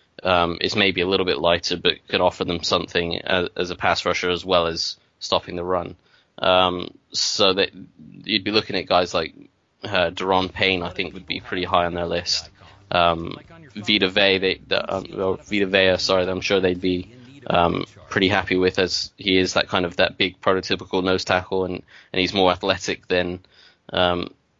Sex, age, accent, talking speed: male, 20-39, British, 195 wpm